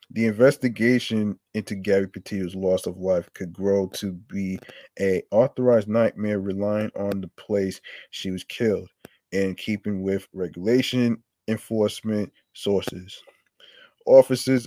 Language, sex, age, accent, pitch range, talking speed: English, male, 20-39, American, 100-115 Hz, 120 wpm